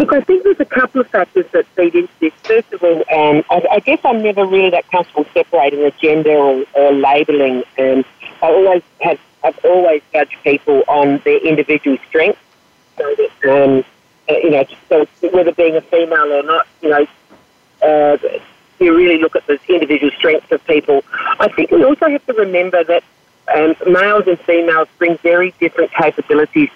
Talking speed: 185 wpm